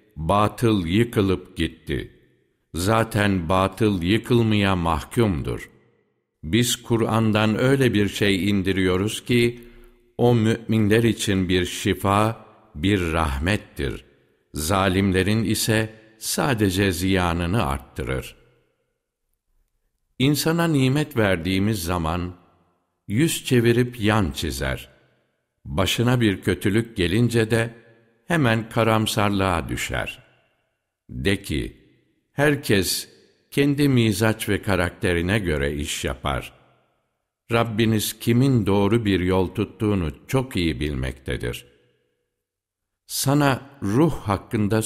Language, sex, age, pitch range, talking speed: Turkish, male, 60-79, 85-115 Hz, 85 wpm